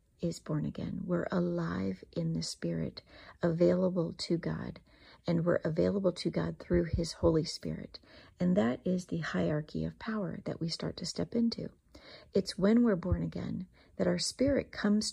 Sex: female